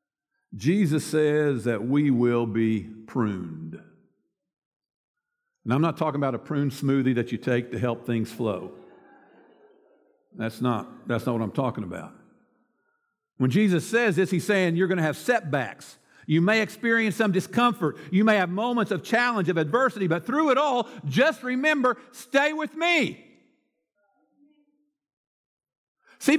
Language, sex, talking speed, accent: English, male, 145 wpm, American